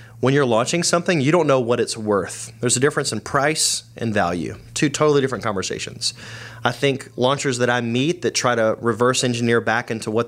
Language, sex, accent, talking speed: English, male, American, 205 wpm